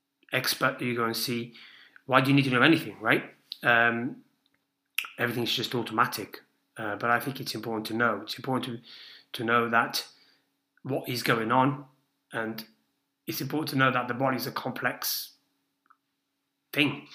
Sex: male